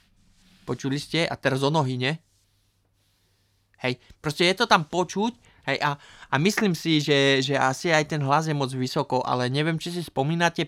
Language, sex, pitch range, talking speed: Slovak, male, 125-150 Hz, 180 wpm